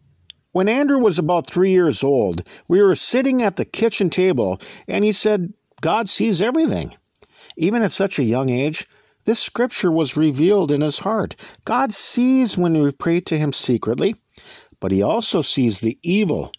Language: English